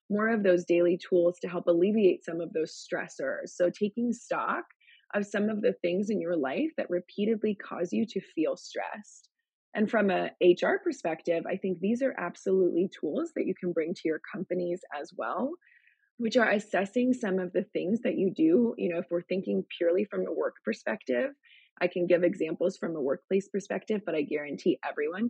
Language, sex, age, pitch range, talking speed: English, female, 20-39, 175-250 Hz, 195 wpm